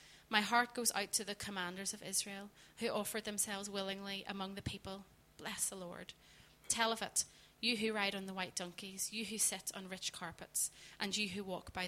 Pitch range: 185-215 Hz